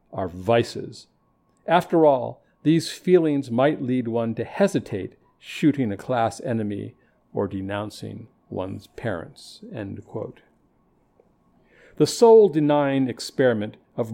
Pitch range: 115-150 Hz